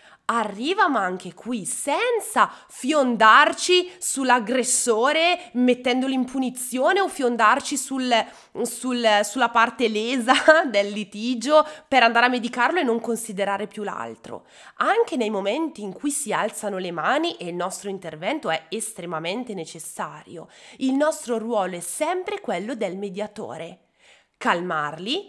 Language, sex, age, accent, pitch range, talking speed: Italian, female, 20-39, native, 185-250 Hz, 120 wpm